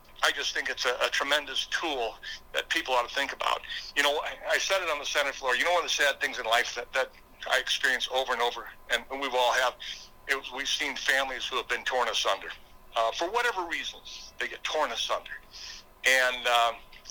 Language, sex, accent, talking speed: English, male, American, 230 wpm